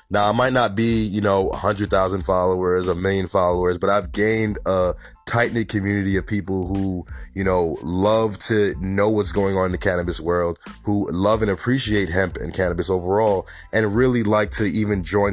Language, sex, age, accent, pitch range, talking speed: English, male, 20-39, American, 95-115 Hz, 185 wpm